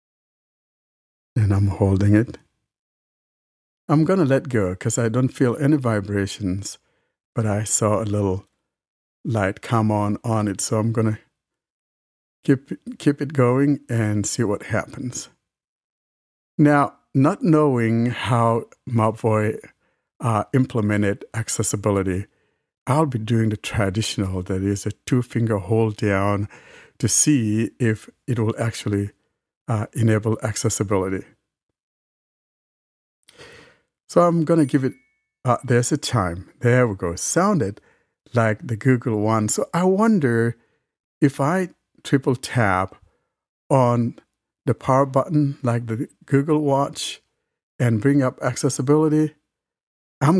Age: 60-79